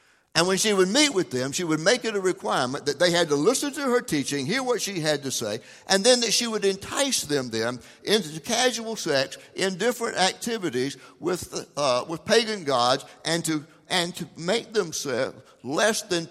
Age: 60-79